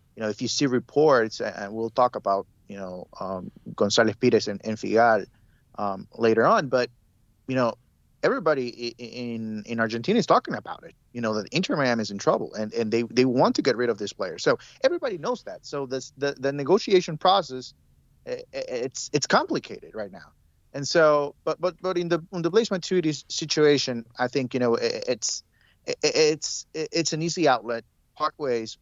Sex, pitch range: male, 115-160 Hz